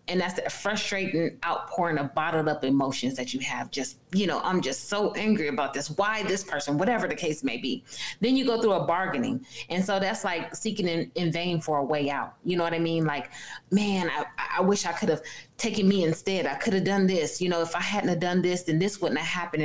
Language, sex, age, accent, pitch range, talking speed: English, female, 20-39, American, 160-200 Hz, 245 wpm